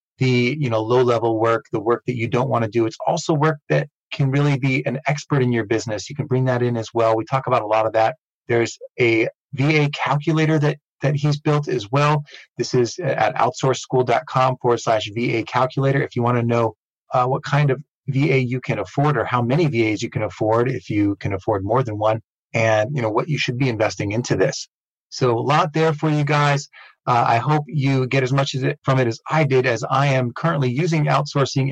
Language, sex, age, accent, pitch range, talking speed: English, male, 30-49, American, 115-140 Hz, 230 wpm